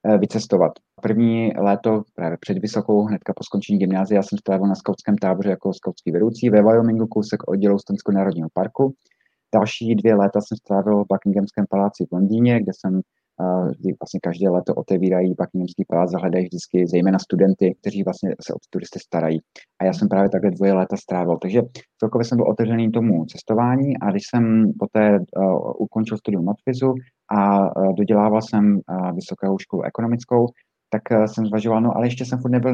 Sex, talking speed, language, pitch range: male, 170 wpm, Czech, 95-110 Hz